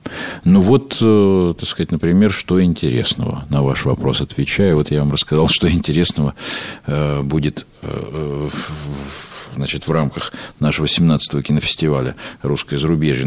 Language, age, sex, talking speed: Russian, 50-69, male, 120 wpm